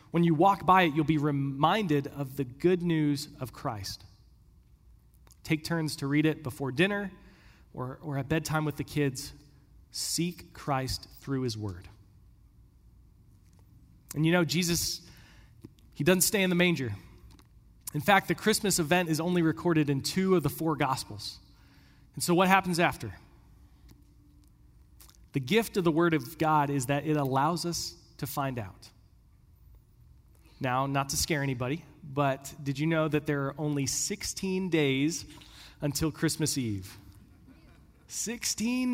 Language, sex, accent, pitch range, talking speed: English, male, American, 125-170 Hz, 150 wpm